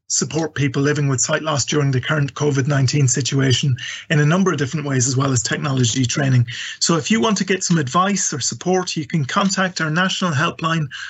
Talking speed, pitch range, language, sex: 205 wpm, 145-185 Hz, English, male